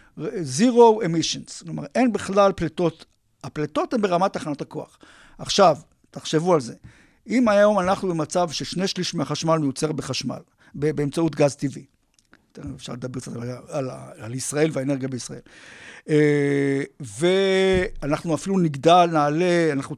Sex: male